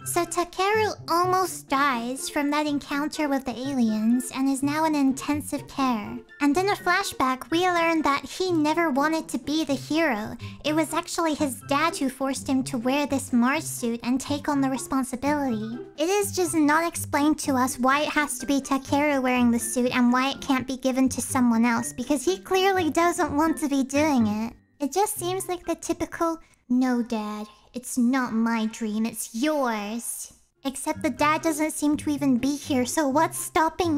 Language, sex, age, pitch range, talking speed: English, male, 20-39, 255-320 Hz, 190 wpm